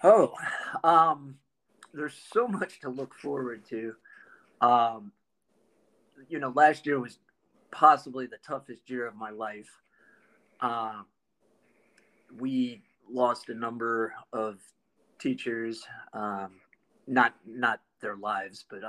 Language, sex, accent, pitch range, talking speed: English, male, American, 115-135 Hz, 110 wpm